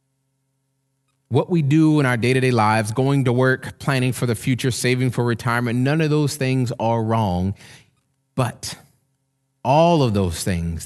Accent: American